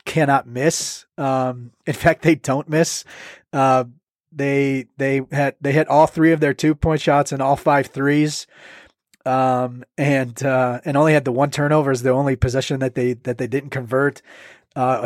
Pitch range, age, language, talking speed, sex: 130-150 Hz, 30-49, English, 180 wpm, male